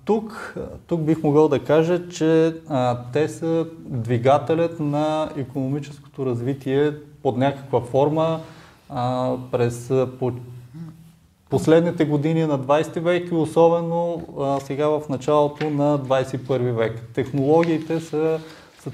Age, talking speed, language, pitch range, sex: 20-39, 120 wpm, Bulgarian, 125-160 Hz, male